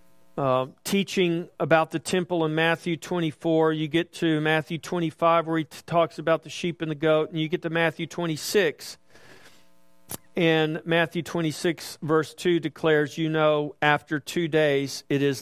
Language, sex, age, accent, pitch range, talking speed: English, male, 50-69, American, 150-175 Hz, 165 wpm